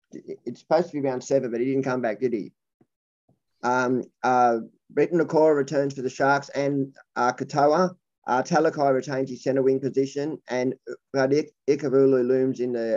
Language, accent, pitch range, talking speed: English, Australian, 125-145 Hz, 165 wpm